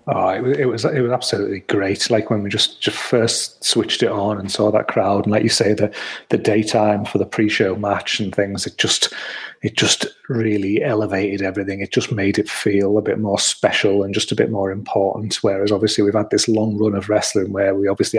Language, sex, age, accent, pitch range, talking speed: English, male, 30-49, British, 100-120 Hz, 230 wpm